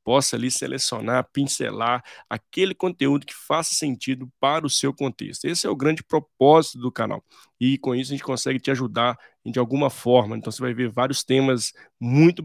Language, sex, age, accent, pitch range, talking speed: Portuguese, male, 20-39, Brazilian, 120-140 Hz, 185 wpm